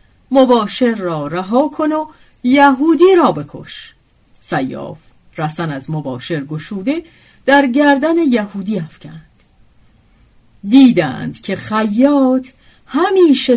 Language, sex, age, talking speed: Persian, female, 50-69, 95 wpm